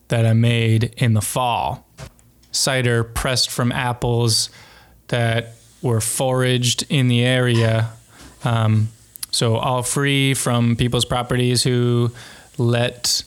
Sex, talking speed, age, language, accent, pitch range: male, 115 wpm, 20-39, English, American, 120-135 Hz